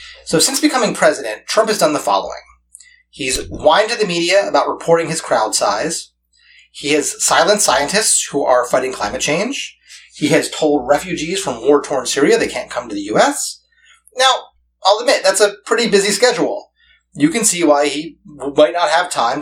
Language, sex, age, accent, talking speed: English, male, 30-49, American, 180 wpm